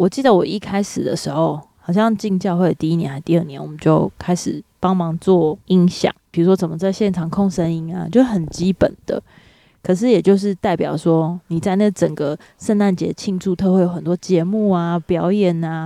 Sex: female